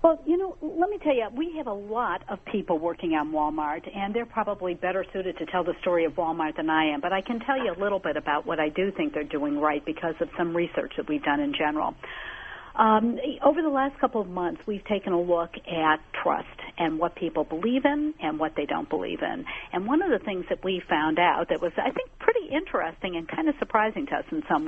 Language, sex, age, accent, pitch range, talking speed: English, female, 60-79, American, 165-235 Hz, 250 wpm